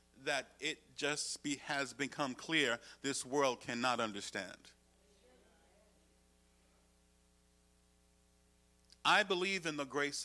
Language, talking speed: English, 95 wpm